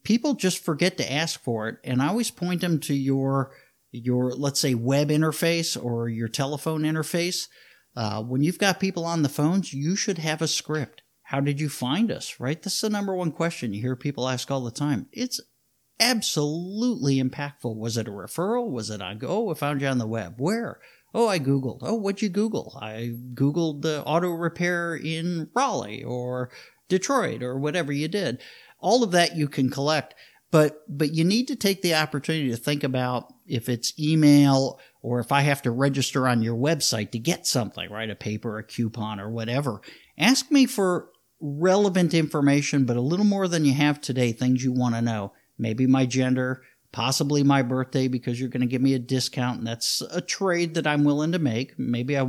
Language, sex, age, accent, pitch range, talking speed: English, male, 50-69, American, 125-170 Hz, 200 wpm